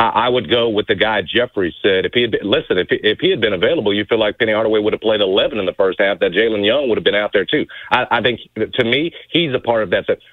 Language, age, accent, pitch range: English, 40-59, American, 110-150 Hz